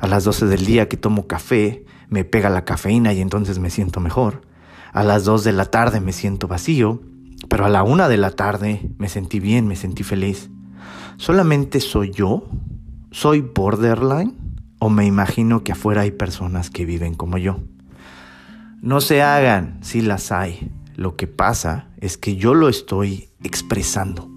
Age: 40-59